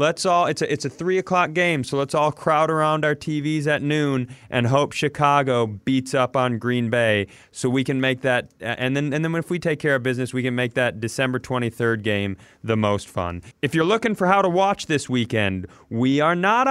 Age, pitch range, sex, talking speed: 30-49, 125-170 Hz, male, 220 wpm